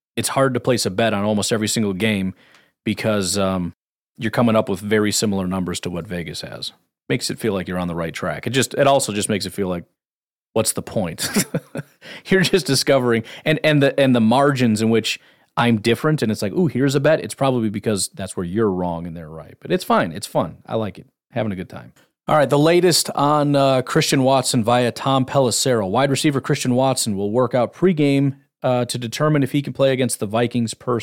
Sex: male